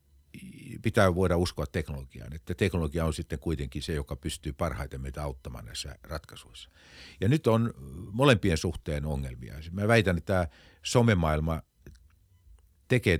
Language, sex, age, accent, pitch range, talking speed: Finnish, male, 50-69, native, 75-95 Hz, 130 wpm